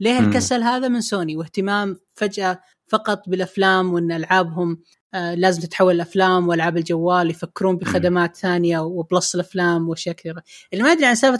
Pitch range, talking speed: 180-230 Hz, 135 wpm